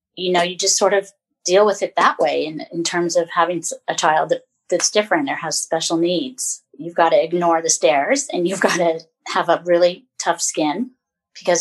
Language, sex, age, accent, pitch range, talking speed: English, female, 30-49, American, 170-205 Hz, 210 wpm